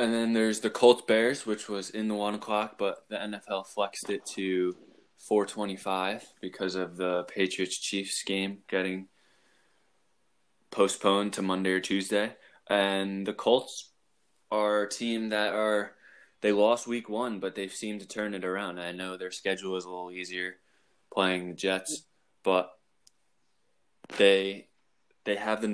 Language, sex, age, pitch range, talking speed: English, male, 20-39, 95-105 Hz, 150 wpm